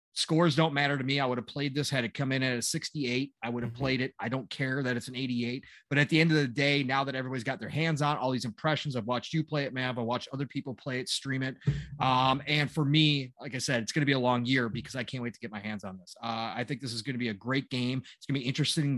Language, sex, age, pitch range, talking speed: English, male, 30-49, 130-155 Hz, 315 wpm